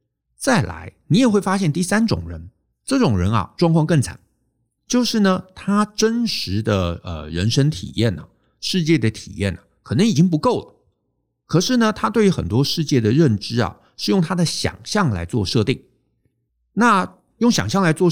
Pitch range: 105-175 Hz